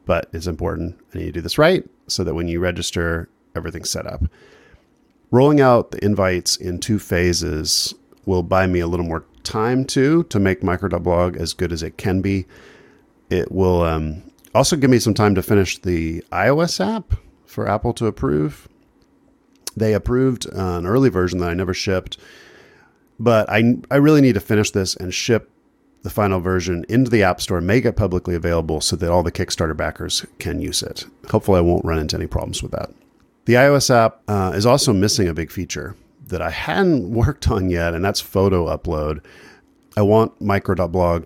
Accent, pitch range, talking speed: American, 85-110 Hz, 190 wpm